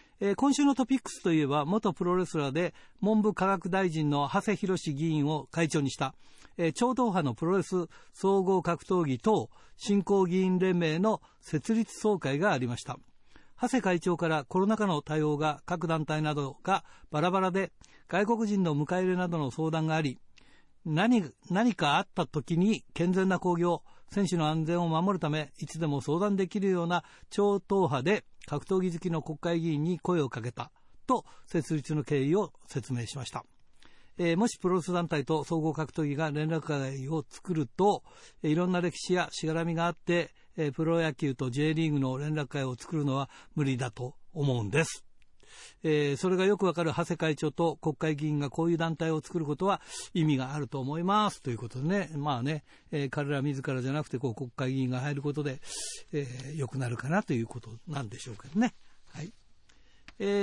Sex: male